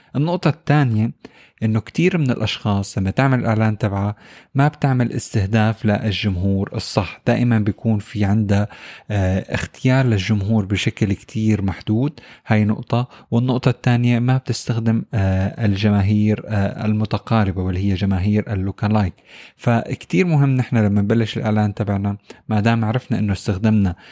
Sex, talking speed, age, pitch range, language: male, 120 wpm, 20-39, 105-125 Hz, Arabic